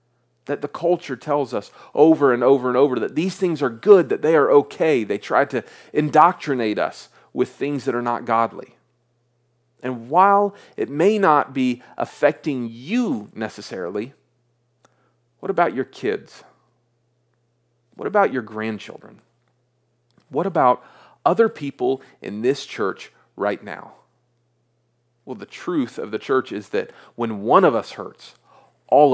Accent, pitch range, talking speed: American, 120-180 Hz, 145 wpm